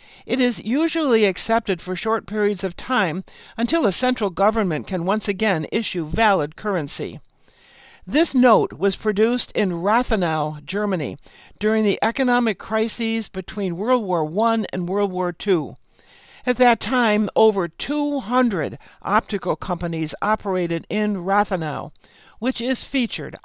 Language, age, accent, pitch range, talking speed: English, 60-79, American, 185-235 Hz, 130 wpm